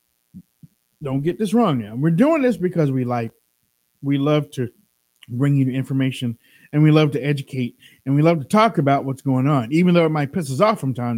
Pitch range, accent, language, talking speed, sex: 115-155 Hz, American, English, 215 wpm, male